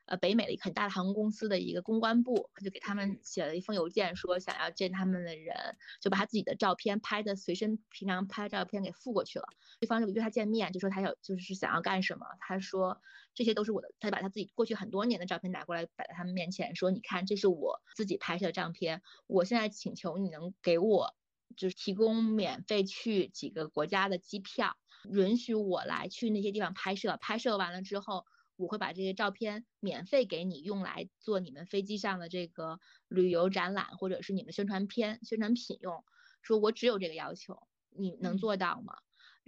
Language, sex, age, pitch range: Chinese, female, 20-39, 185-215 Hz